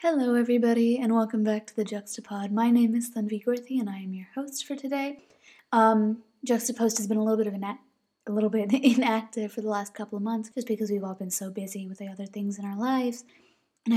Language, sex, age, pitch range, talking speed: English, female, 20-39, 195-230 Hz, 235 wpm